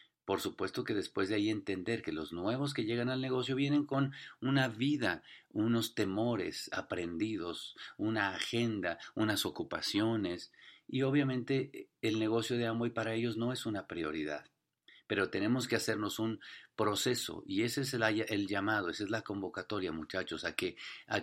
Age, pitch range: 50-69, 100-125 Hz